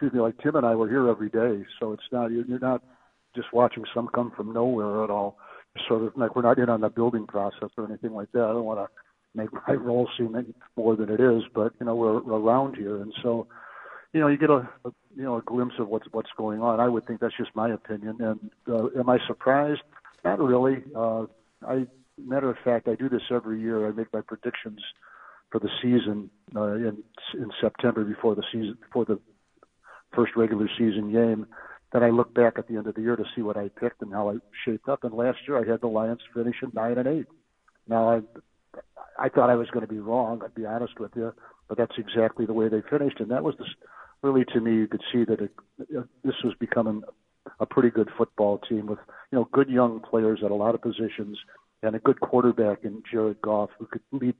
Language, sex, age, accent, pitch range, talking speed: English, male, 60-79, American, 110-120 Hz, 235 wpm